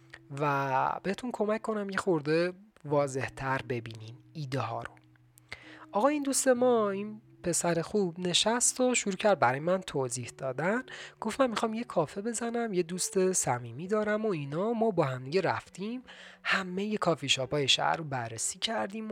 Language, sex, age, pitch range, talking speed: Persian, male, 30-49, 140-215 Hz, 160 wpm